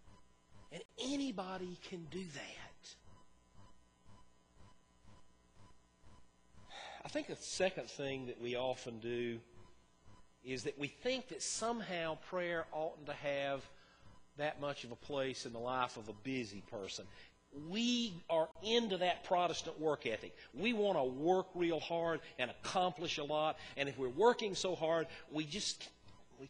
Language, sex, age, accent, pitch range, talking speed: English, male, 40-59, American, 110-165 Hz, 140 wpm